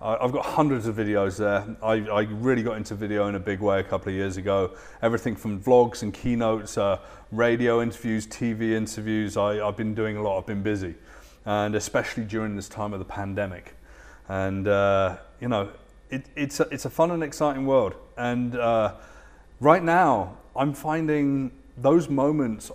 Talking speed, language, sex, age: 175 wpm, English, male, 30-49